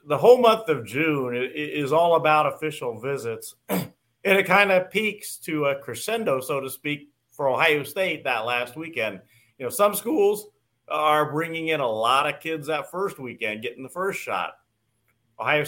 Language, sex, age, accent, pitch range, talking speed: English, male, 40-59, American, 125-160 Hz, 175 wpm